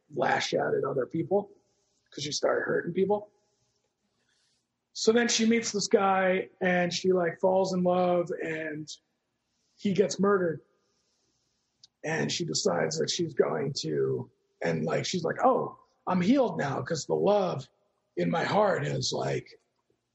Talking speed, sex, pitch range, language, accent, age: 145 wpm, male, 175-235 Hz, English, American, 40-59